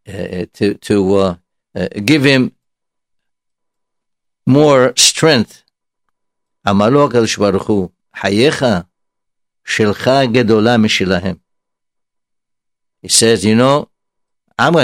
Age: 60-79